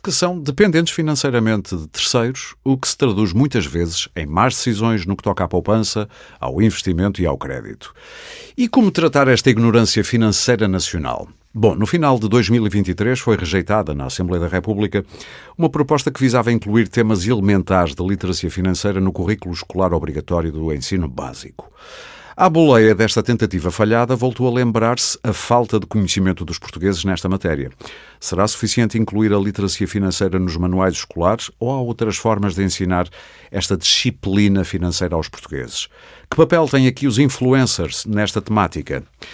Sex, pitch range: male, 95-120 Hz